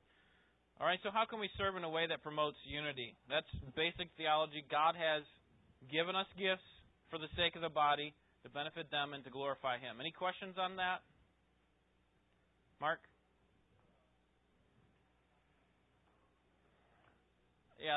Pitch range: 135-170 Hz